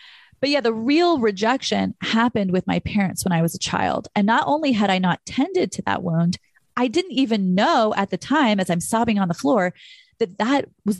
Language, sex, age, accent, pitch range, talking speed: English, female, 30-49, American, 180-250 Hz, 220 wpm